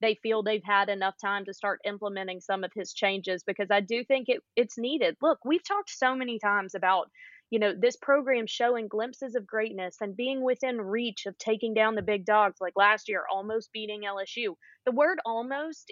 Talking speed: 205 wpm